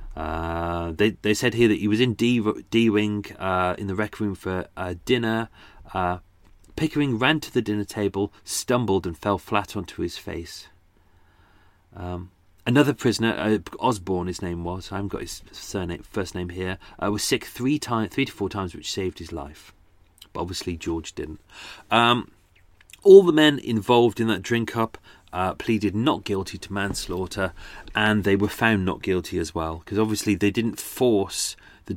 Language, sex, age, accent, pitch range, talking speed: English, male, 30-49, British, 90-115 Hz, 185 wpm